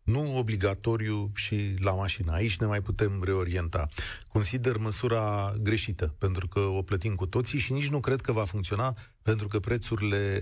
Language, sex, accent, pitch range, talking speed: Romanian, male, native, 100-130 Hz, 165 wpm